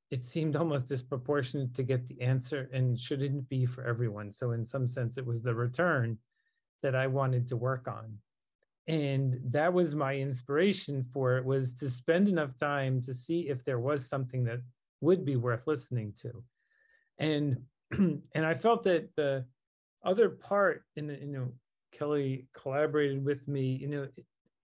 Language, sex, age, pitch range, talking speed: English, male, 40-59, 125-160 Hz, 170 wpm